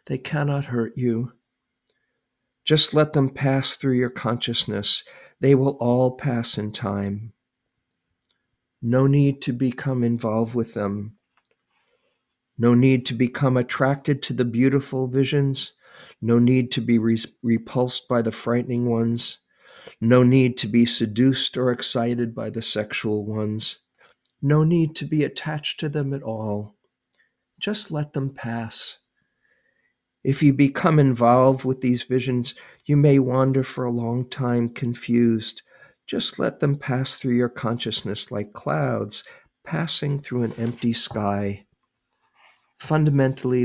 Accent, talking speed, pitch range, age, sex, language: American, 130 wpm, 115-135 Hz, 50-69, male, English